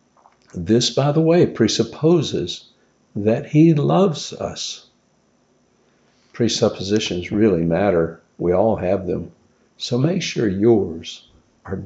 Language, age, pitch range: English, 60-79, 95-130 Hz